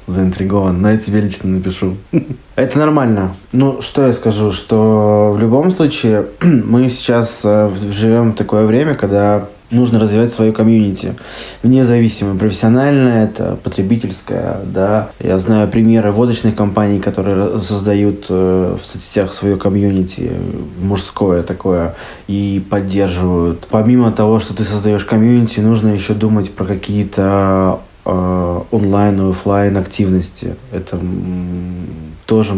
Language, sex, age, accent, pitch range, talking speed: Russian, male, 20-39, native, 95-115 Hz, 115 wpm